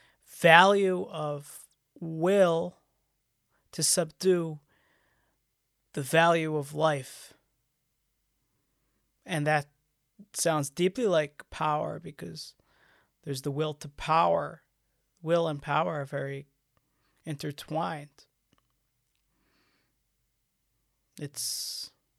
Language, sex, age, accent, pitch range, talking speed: English, male, 30-49, American, 140-175 Hz, 75 wpm